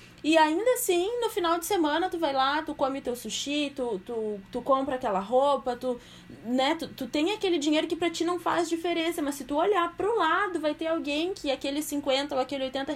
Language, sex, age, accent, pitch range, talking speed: Portuguese, female, 20-39, Brazilian, 255-320 Hz, 220 wpm